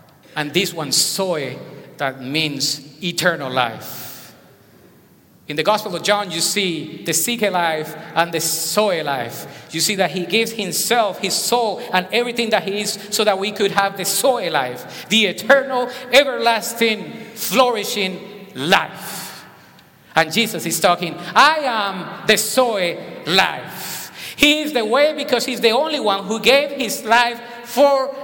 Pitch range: 185-265 Hz